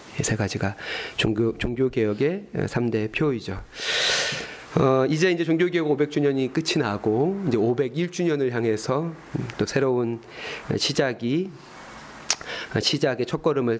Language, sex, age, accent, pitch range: Korean, male, 30-49, native, 120-180 Hz